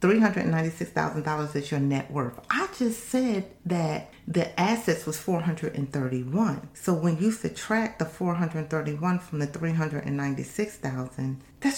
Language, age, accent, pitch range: English, 40-59, American, 130-200 Hz